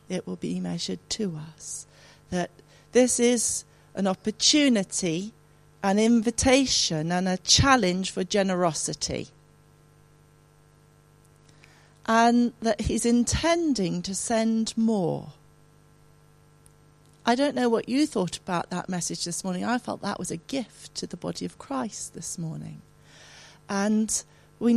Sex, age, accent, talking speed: female, 40-59, British, 125 wpm